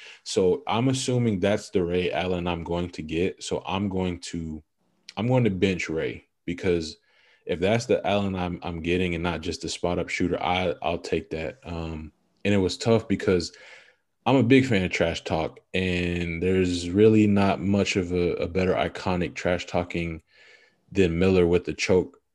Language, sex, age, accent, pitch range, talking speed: English, male, 20-39, American, 85-105 Hz, 185 wpm